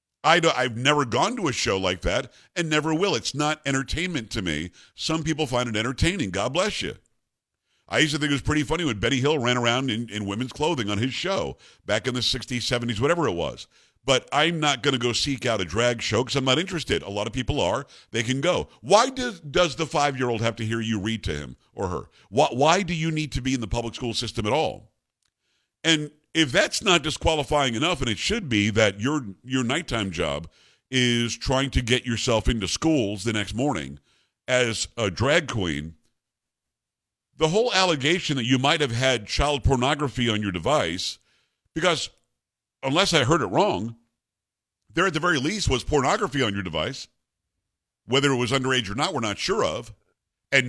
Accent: American